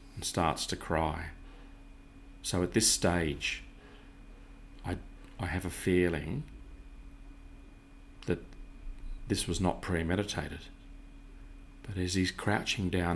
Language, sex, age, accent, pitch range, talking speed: English, male, 40-59, Australian, 80-95 Hz, 105 wpm